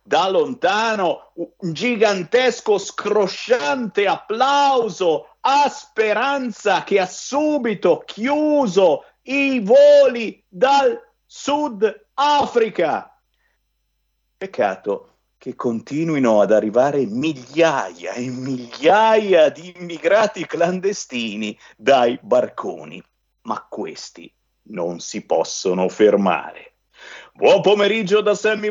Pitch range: 165-265 Hz